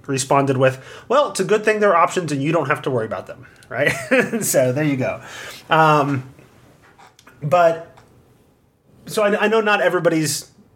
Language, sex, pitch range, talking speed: English, male, 125-155 Hz, 175 wpm